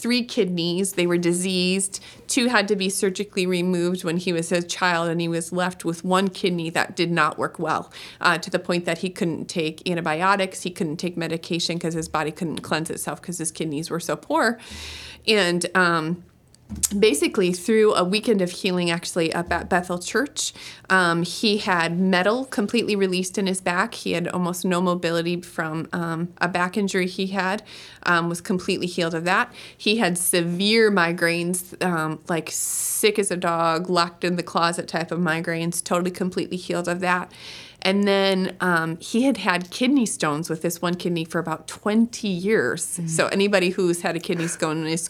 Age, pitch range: 30-49, 170-200 Hz